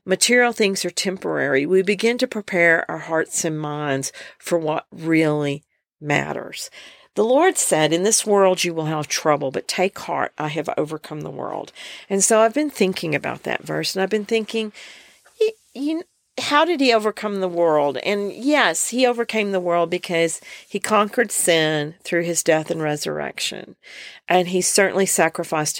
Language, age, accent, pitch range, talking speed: English, 50-69, American, 165-225 Hz, 165 wpm